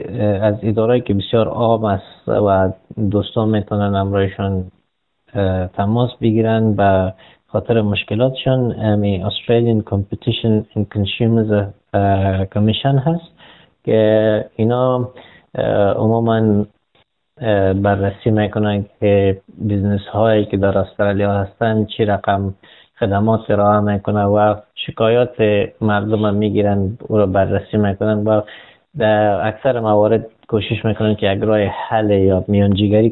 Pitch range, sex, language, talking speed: 100-110 Hz, male, Persian, 110 wpm